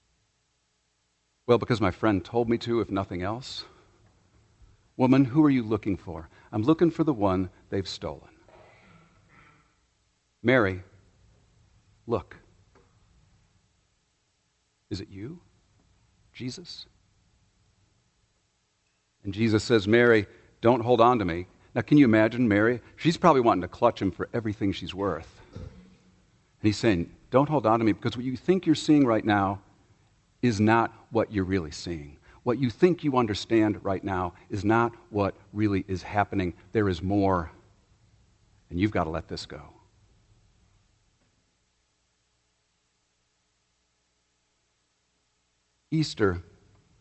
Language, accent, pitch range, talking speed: English, American, 90-115 Hz, 125 wpm